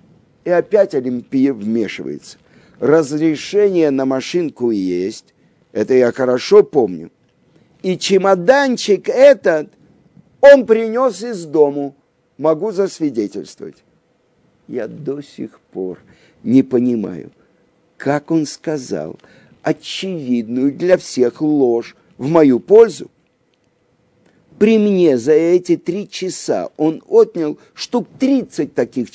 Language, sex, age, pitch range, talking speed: Russian, male, 50-69, 140-205 Hz, 100 wpm